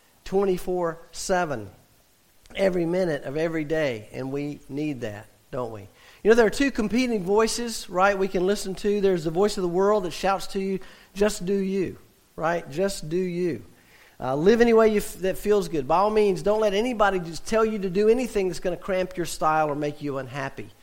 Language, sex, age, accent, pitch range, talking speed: English, male, 50-69, American, 140-195 Hz, 200 wpm